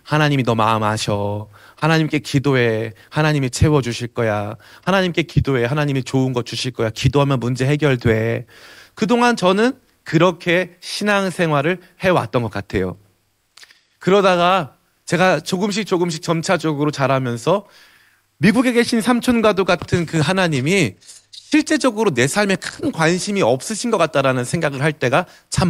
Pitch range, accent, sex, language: 115-170 Hz, native, male, Korean